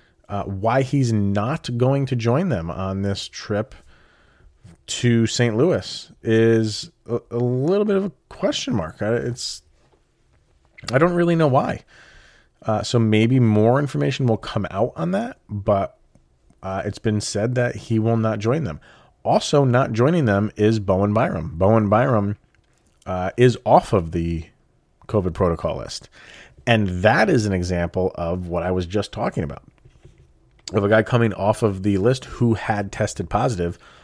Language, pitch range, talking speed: English, 95-120 Hz, 160 wpm